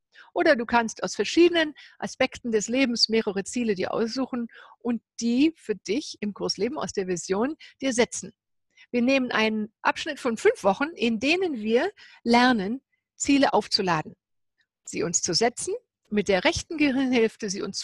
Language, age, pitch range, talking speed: German, 50-69, 210-280 Hz, 155 wpm